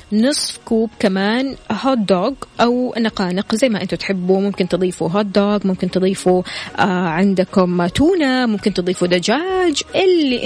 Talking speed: 140 wpm